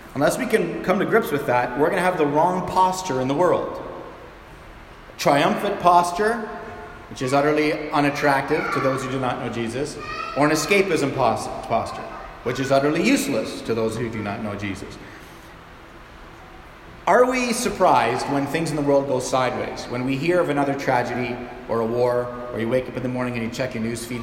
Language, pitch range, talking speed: English, 125-160 Hz, 195 wpm